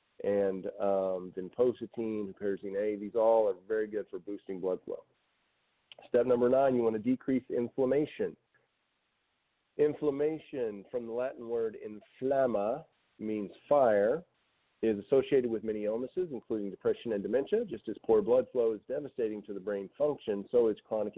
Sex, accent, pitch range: male, American, 105-145 Hz